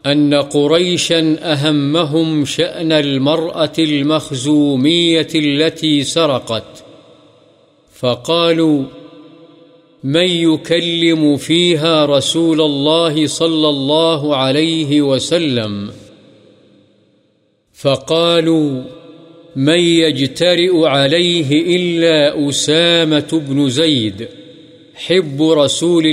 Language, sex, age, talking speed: Urdu, male, 50-69, 65 wpm